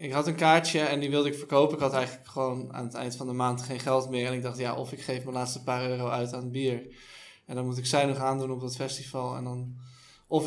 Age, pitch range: 20-39, 130-145 Hz